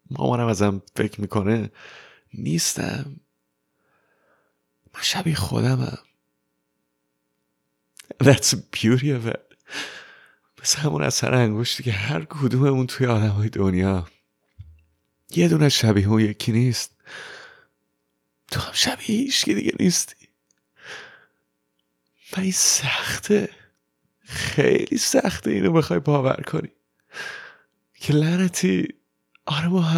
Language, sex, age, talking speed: Persian, male, 30-49, 90 wpm